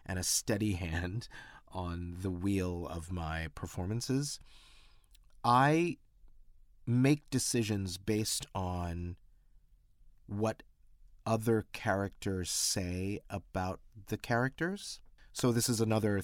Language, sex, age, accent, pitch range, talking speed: English, male, 30-49, American, 90-115 Hz, 95 wpm